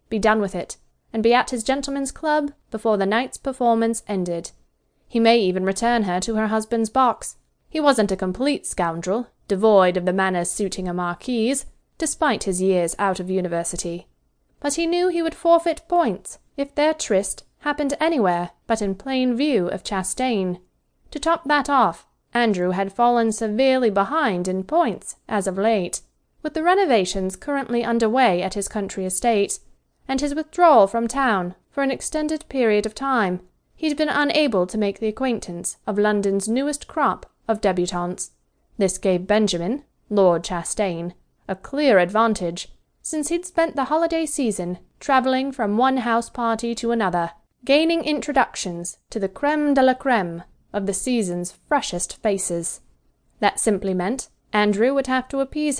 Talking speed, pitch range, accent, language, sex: 160 wpm, 190-270 Hz, British, English, female